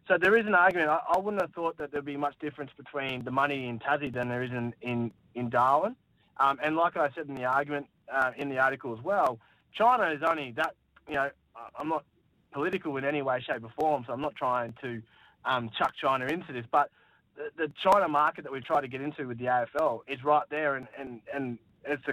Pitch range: 125-150 Hz